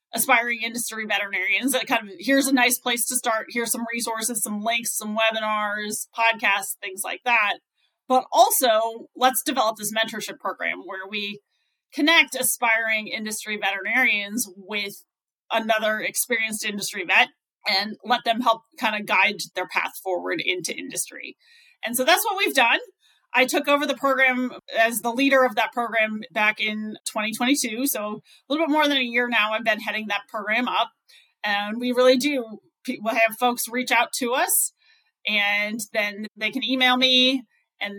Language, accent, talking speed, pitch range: English, American, 165 wpm, 215-260 Hz